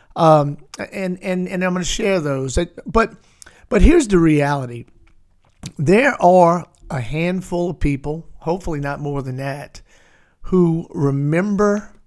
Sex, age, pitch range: male, 50-69, 140-180 Hz